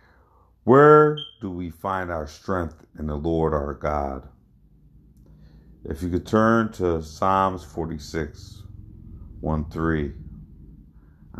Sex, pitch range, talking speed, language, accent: male, 75-90 Hz, 105 wpm, English, American